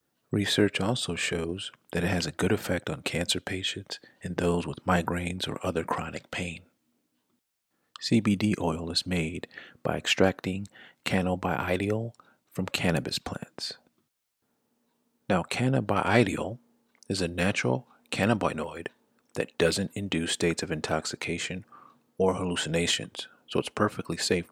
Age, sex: 40-59, male